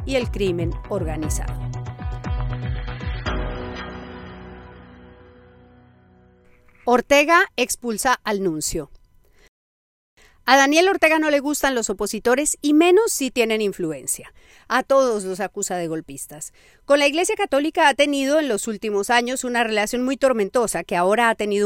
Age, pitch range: 40-59, 190-260 Hz